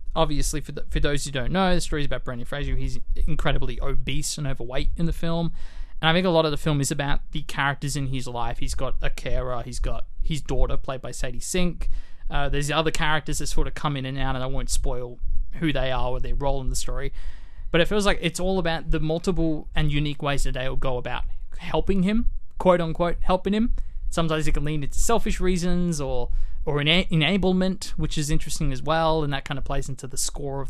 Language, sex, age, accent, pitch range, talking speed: English, male, 20-39, Australian, 130-160 Hz, 235 wpm